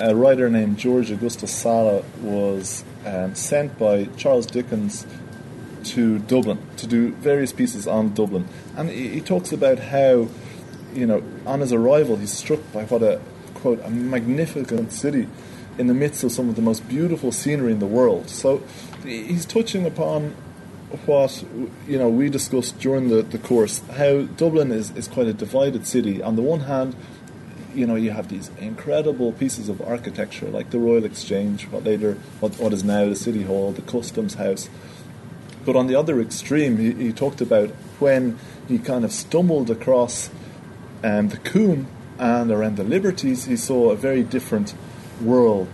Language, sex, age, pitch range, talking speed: English, male, 20-39, 115-145 Hz, 175 wpm